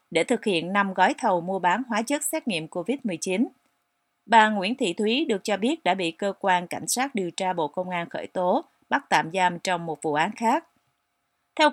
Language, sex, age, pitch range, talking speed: Vietnamese, female, 30-49, 180-230 Hz, 215 wpm